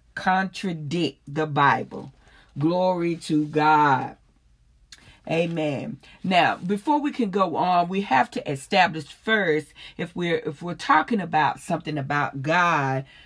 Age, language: 40-59, English